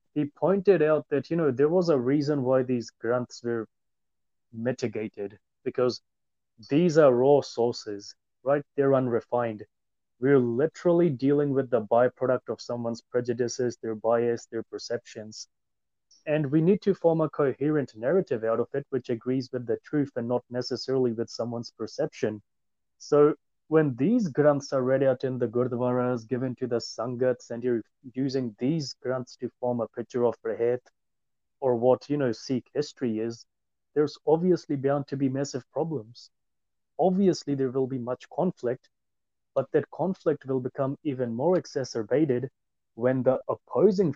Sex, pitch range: male, 120-145 Hz